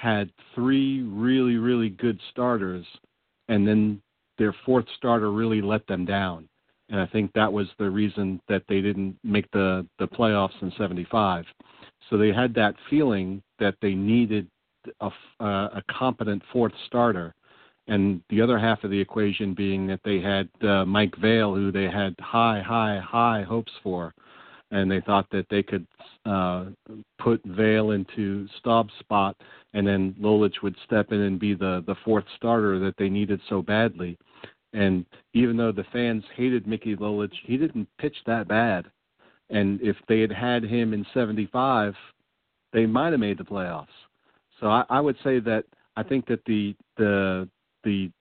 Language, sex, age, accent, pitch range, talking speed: English, male, 50-69, American, 100-115 Hz, 165 wpm